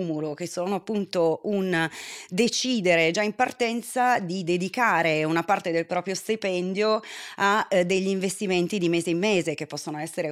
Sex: female